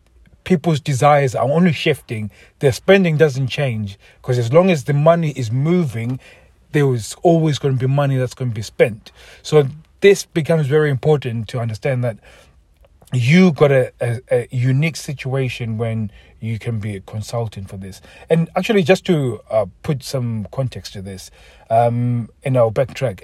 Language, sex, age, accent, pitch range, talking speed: English, male, 30-49, South African, 110-140 Hz, 170 wpm